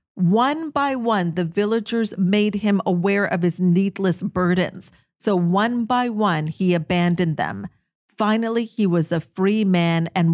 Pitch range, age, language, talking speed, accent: 180-230 Hz, 50-69, English, 150 wpm, American